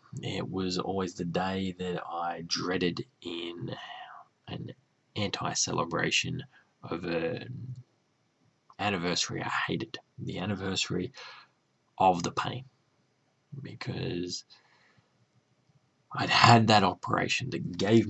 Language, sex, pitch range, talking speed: English, male, 90-130 Hz, 95 wpm